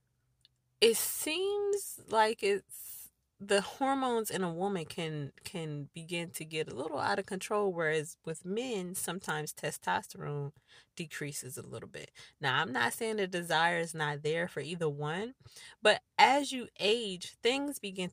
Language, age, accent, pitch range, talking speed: English, 20-39, American, 160-220 Hz, 150 wpm